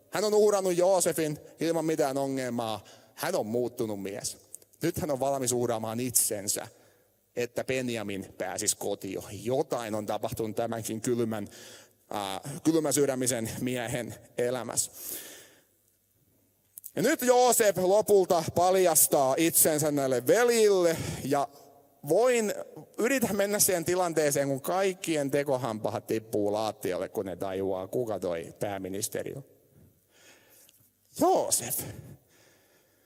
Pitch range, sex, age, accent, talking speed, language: 115-165 Hz, male, 30-49, native, 105 wpm, Finnish